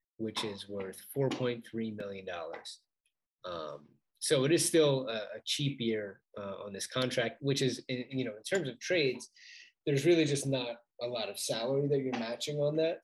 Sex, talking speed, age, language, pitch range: male, 180 wpm, 20-39, English, 115-150 Hz